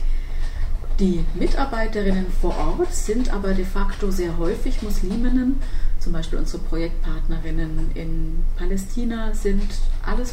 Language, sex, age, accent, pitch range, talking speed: German, female, 30-49, German, 165-210 Hz, 110 wpm